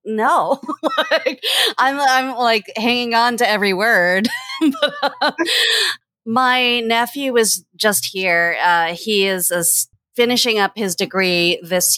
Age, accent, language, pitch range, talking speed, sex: 30-49, American, English, 170-245 Hz, 125 wpm, female